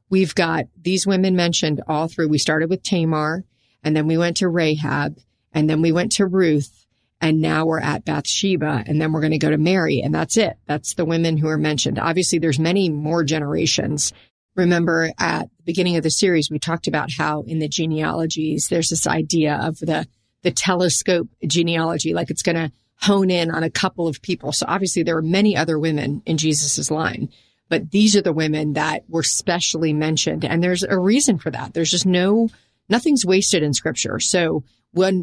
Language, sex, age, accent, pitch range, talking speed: English, female, 40-59, American, 155-185 Hz, 200 wpm